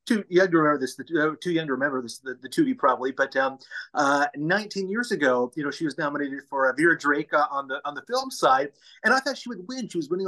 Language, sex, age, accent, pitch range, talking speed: English, male, 30-49, American, 140-195 Hz, 255 wpm